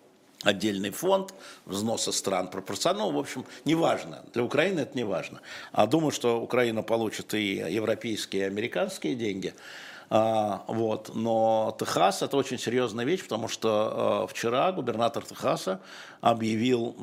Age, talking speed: 60-79, 135 wpm